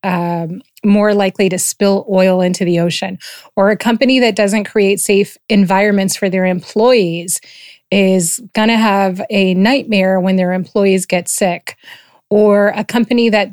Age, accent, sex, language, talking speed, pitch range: 30-49, American, female, English, 155 wpm, 180-215 Hz